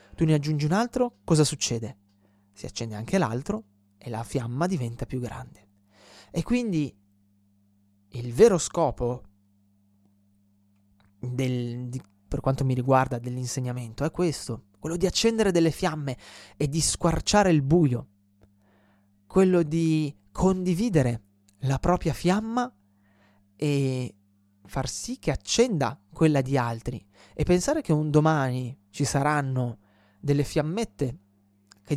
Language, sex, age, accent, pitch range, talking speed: Italian, male, 20-39, native, 105-175 Hz, 120 wpm